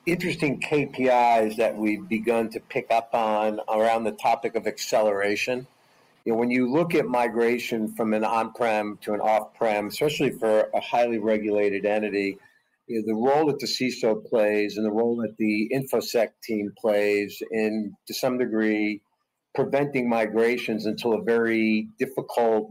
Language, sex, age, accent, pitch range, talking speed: English, male, 50-69, American, 105-120 Hz, 160 wpm